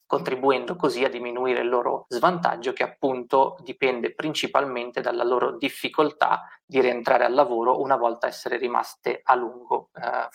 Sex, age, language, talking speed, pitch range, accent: male, 20-39, Italian, 145 wpm, 120-150 Hz, native